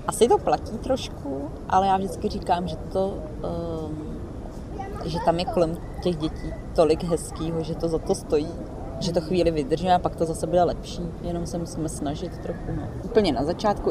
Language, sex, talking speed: Czech, female, 185 wpm